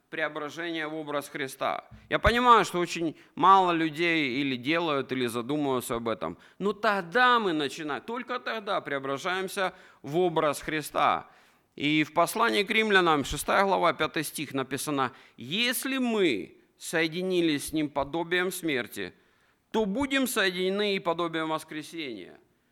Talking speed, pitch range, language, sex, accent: 130 wpm, 145-205 Hz, Russian, male, native